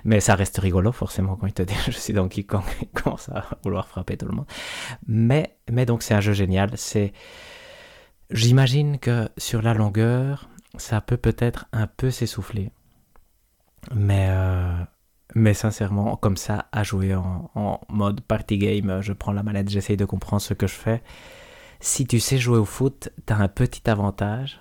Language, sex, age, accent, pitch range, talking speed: French, male, 20-39, French, 95-115 Hz, 180 wpm